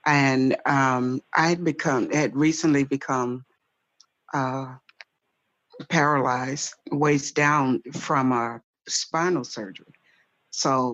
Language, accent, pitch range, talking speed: English, American, 130-155 Hz, 95 wpm